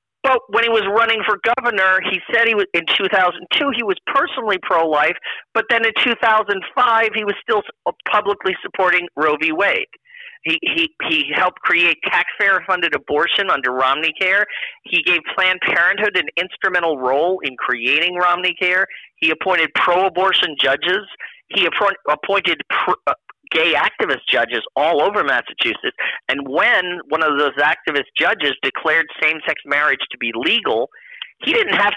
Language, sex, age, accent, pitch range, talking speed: English, male, 40-59, American, 180-235 Hz, 160 wpm